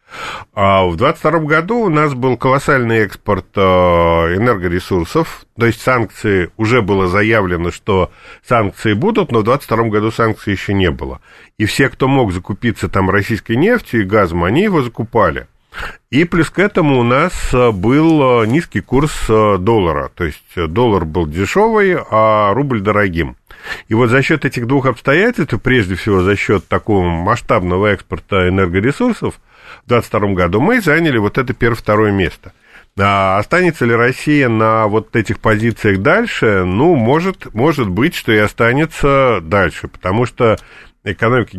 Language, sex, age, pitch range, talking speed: Russian, male, 40-59, 100-130 Hz, 150 wpm